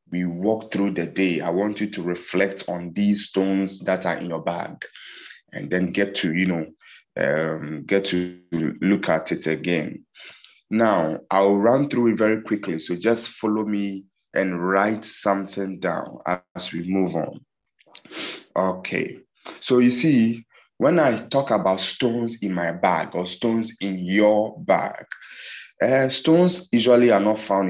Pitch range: 95-110 Hz